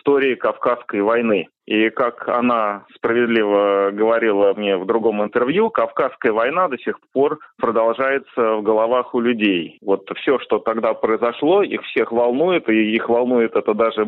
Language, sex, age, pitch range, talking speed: Russian, male, 30-49, 110-125 Hz, 150 wpm